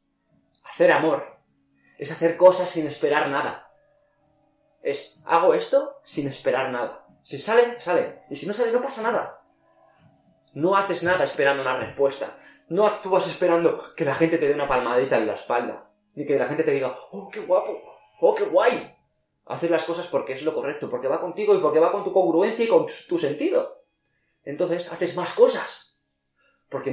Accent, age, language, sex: Spanish, 20-39, Spanish, male